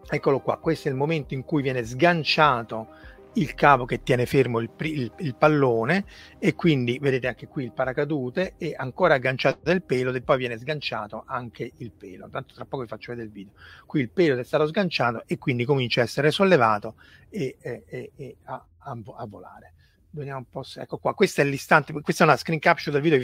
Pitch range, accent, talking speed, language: 120-155 Hz, native, 210 wpm, Italian